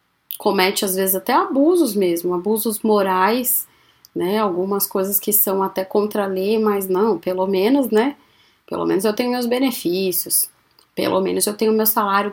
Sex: female